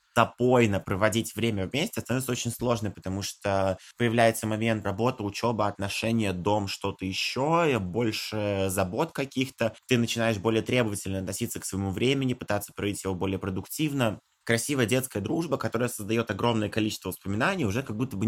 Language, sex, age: Russian, male, 20-39